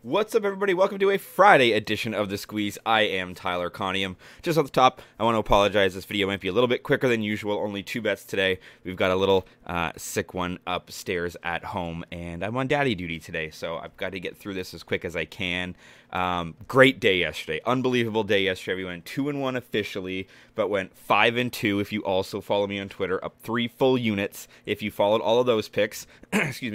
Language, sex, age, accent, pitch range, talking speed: English, male, 20-39, American, 95-115 Hz, 230 wpm